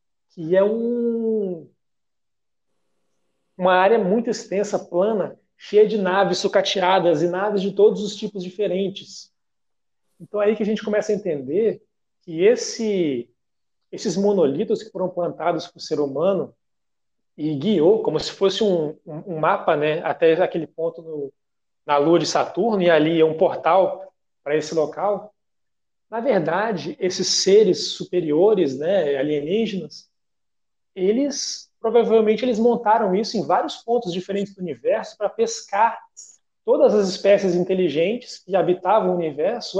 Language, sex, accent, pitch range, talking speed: Portuguese, male, Brazilian, 175-220 Hz, 135 wpm